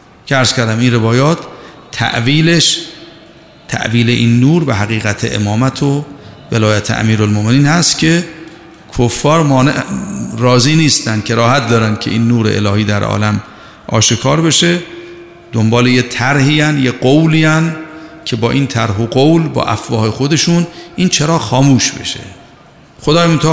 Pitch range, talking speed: 115-160 Hz, 135 wpm